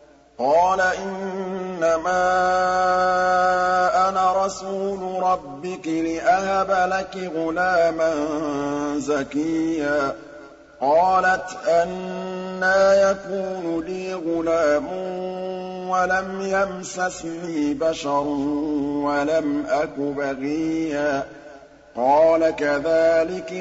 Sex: male